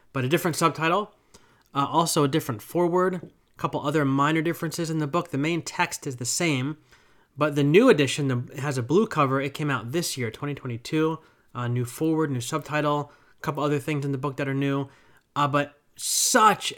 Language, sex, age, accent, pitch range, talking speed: English, male, 30-49, American, 125-155 Hz, 205 wpm